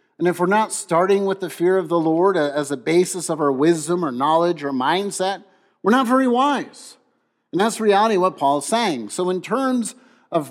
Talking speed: 200 wpm